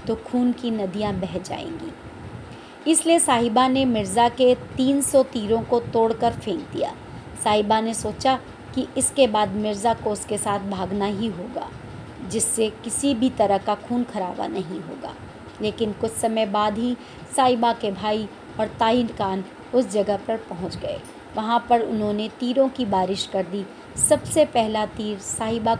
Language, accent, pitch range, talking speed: Hindi, native, 205-240 Hz, 155 wpm